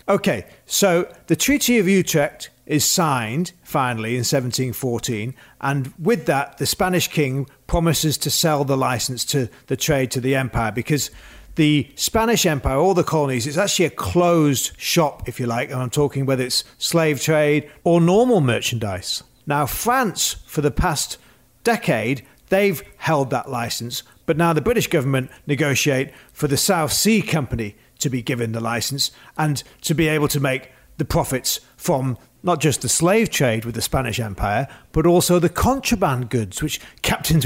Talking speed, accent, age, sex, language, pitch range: 165 wpm, British, 40-59, male, English, 125-170 Hz